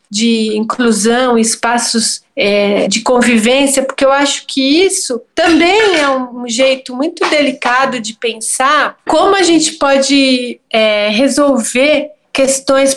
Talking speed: 120 wpm